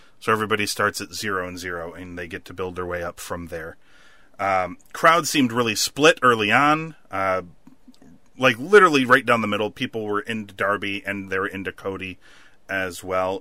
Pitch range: 95-125 Hz